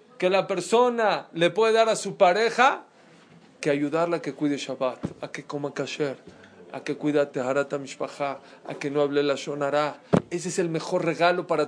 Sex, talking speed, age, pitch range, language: male, 190 wpm, 40-59, 150-195 Hz, Spanish